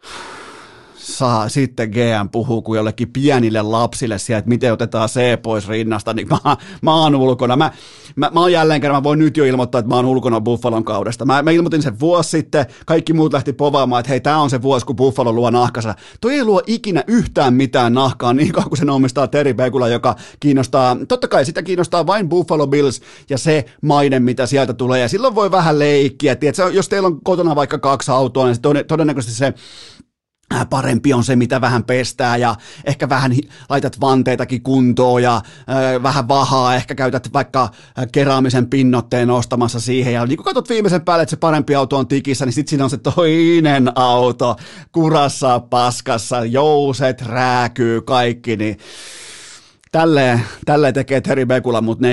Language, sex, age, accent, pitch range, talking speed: Finnish, male, 30-49, native, 125-150 Hz, 175 wpm